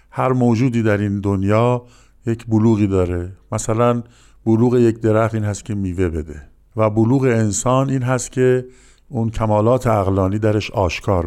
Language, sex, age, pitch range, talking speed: Persian, male, 50-69, 100-125 Hz, 150 wpm